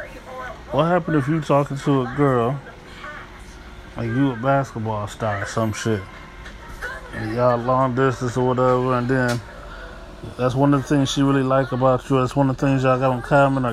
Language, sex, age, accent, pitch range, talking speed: English, male, 20-39, American, 115-145 Hz, 190 wpm